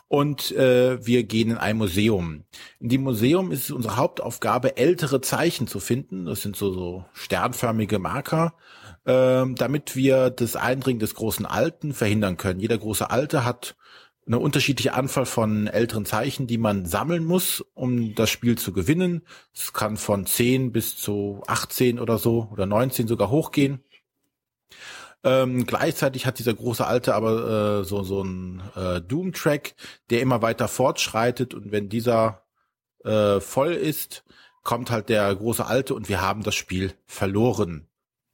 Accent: German